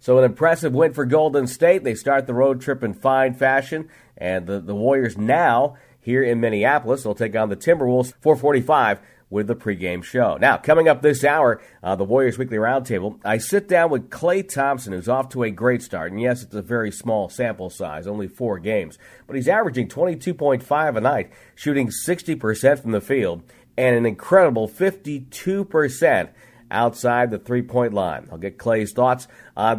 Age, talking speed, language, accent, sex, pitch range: 50-69, 180 wpm, English, American, male, 110-140 Hz